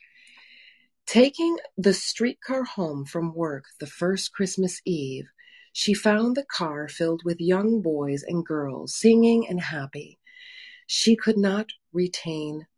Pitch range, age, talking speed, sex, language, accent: 170-225 Hz, 30-49, 125 wpm, female, English, American